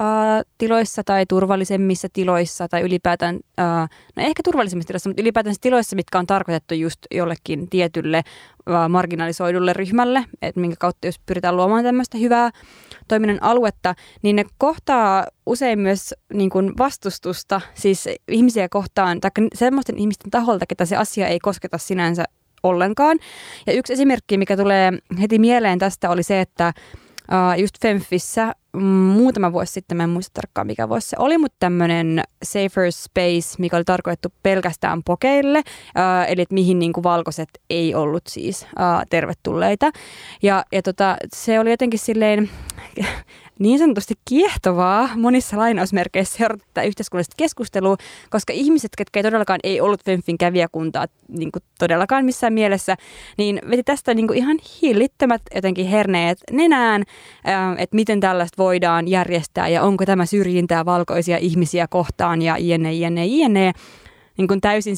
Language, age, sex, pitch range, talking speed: Finnish, 20-39, female, 175-220 Hz, 135 wpm